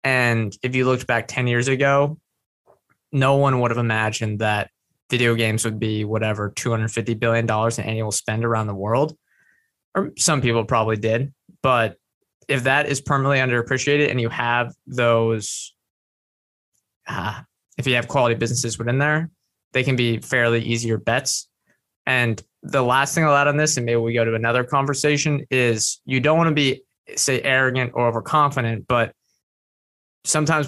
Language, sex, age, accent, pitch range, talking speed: English, male, 20-39, American, 115-135 Hz, 160 wpm